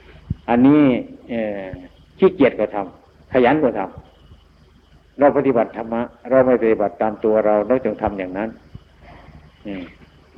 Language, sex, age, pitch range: Thai, male, 60-79, 80-125 Hz